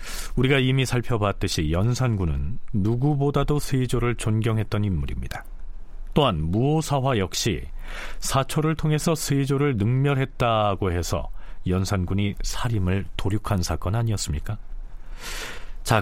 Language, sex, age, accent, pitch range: Korean, male, 40-59, native, 100-145 Hz